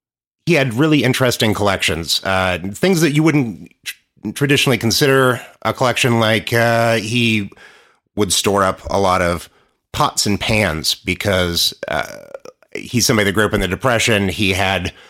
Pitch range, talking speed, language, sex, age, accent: 95-115 Hz, 150 wpm, English, male, 30-49, American